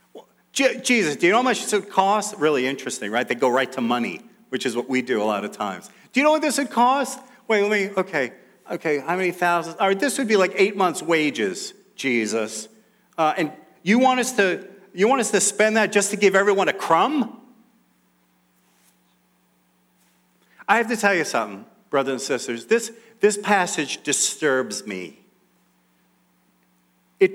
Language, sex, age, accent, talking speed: English, male, 40-59, American, 185 wpm